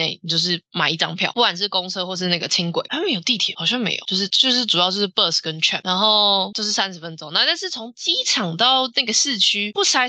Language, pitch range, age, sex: Chinese, 170-220 Hz, 20-39, female